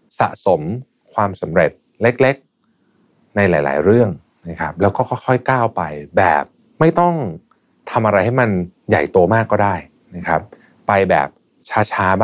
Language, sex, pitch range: Thai, male, 85-120 Hz